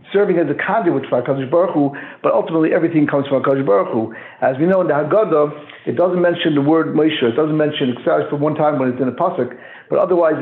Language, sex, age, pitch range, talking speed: English, male, 60-79, 145-175 Hz, 240 wpm